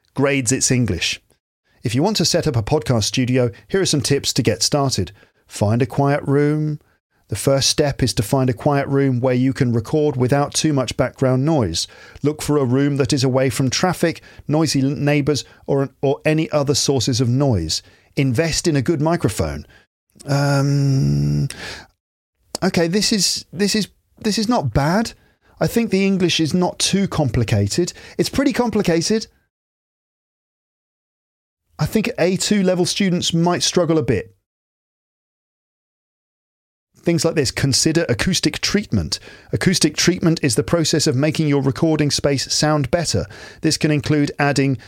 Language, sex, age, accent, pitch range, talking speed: English, male, 40-59, British, 125-160 Hz, 155 wpm